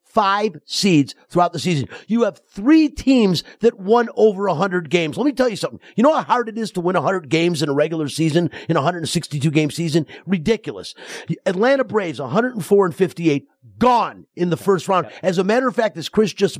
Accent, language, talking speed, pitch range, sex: American, English, 205 wpm, 150-205 Hz, male